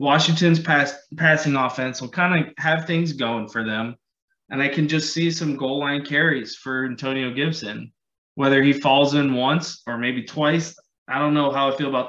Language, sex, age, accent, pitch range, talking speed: English, male, 20-39, American, 130-155 Hz, 190 wpm